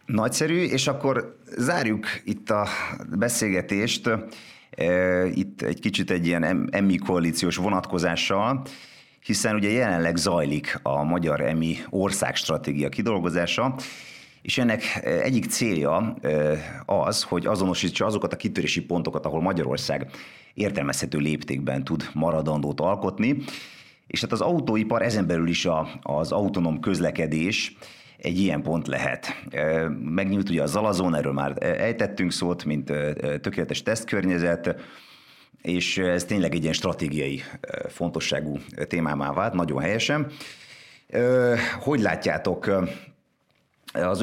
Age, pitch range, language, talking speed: 30-49, 80-105 Hz, Hungarian, 110 wpm